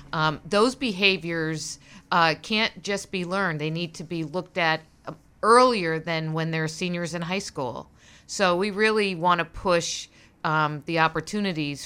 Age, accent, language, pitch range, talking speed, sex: 50-69, American, English, 155-190 Hz, 150 wpm, female